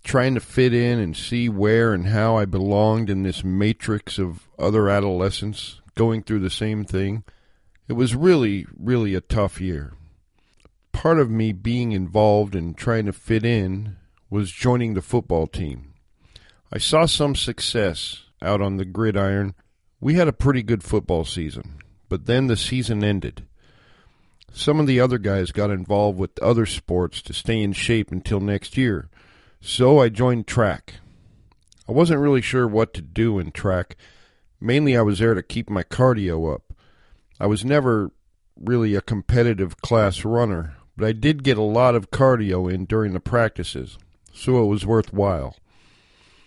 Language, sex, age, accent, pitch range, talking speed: English, male, 50-69, American, 95-120 Hz, 165 wpm